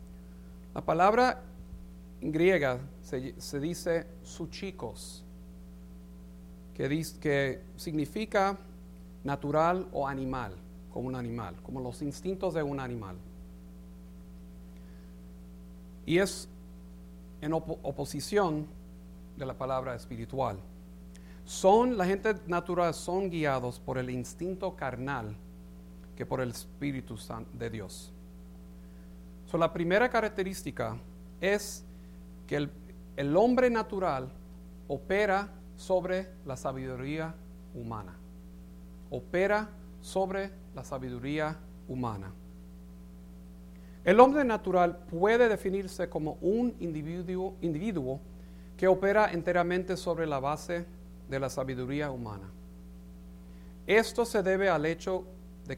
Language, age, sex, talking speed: English, 50-69, male, 105 wpm